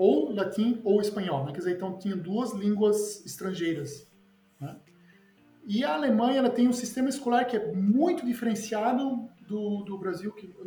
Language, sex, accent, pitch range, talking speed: Portuguese, male, Brazilian, 175-220 Hz, 165 wpm